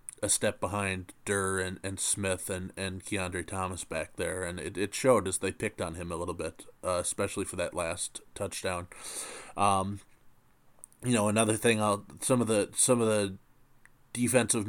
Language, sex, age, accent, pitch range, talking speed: English, male, 20-39, American, 95-120 Hz, 180 wpm